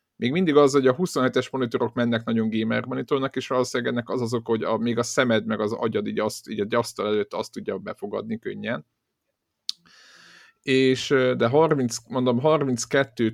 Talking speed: 170 wpm